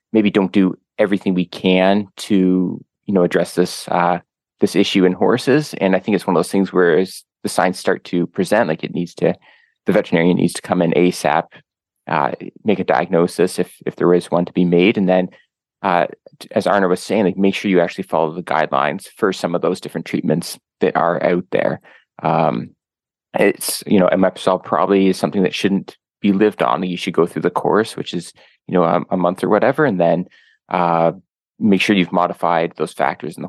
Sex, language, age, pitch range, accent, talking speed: male, English, 20-39, 85-100 Hz, American, 215 wpm